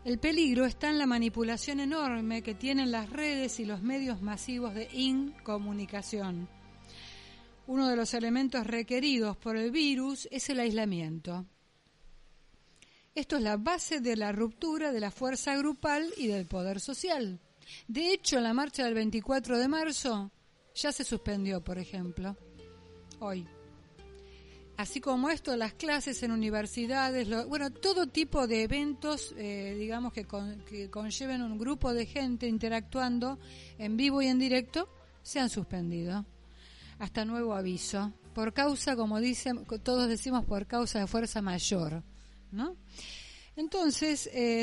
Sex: female